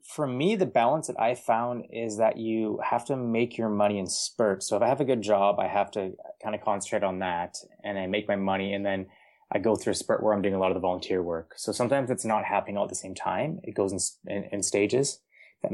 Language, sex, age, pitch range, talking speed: English, male, 20-39, 95-115 Hz, 270 wpm